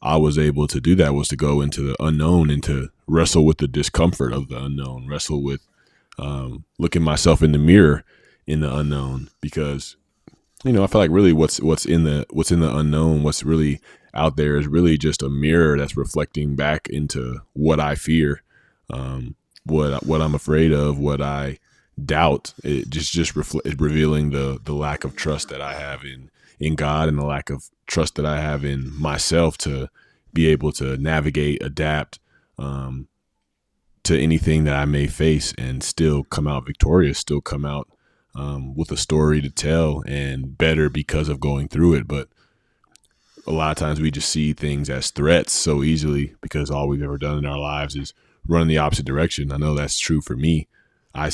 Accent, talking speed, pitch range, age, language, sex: American, 195 wpm, 70-80 Hz, 20-39, English, male